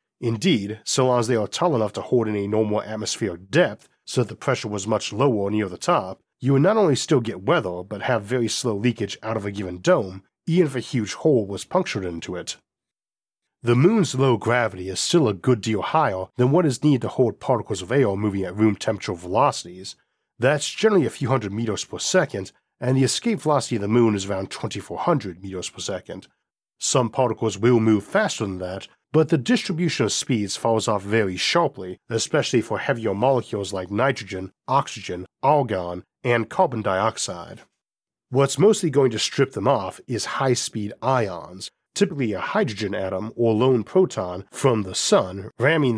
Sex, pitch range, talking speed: male, 100-130 Hz, 190 wpm